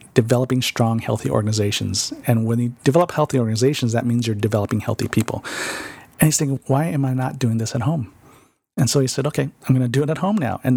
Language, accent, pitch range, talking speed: English, American, 110-135 Hz, 230 wpm